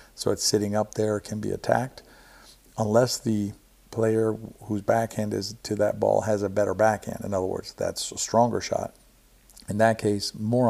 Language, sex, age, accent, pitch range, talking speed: English, male, 50-69, American, 100-115 Hz, 180 wpm